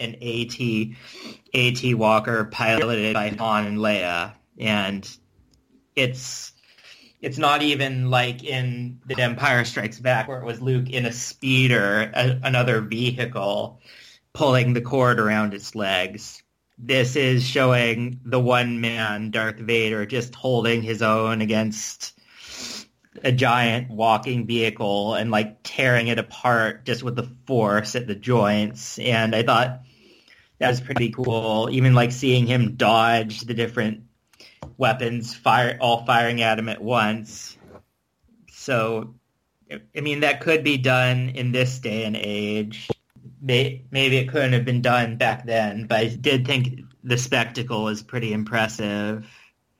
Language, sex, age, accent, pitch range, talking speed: English, male, 30-49, American, 110-125 Hz, 140 wpm